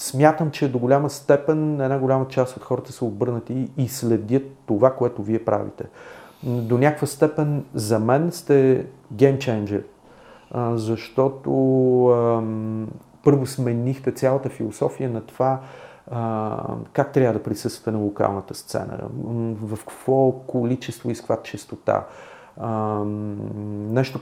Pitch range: 110-135 Hz